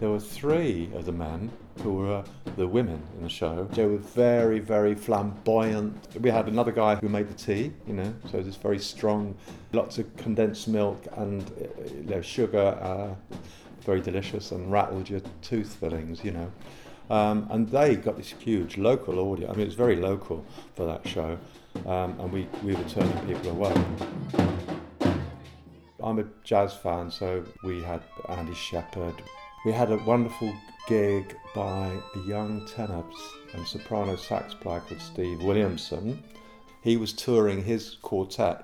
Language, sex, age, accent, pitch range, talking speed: English, male, 50-69, British, 90-110 Hz, 165 wpm